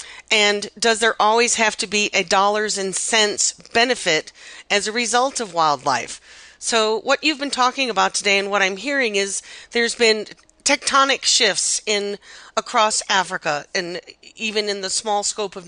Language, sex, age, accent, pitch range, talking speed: English, female, 40-59, American, 190-230 Hz, 165 wpm